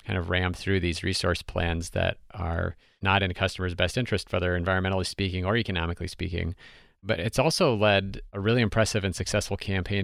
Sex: male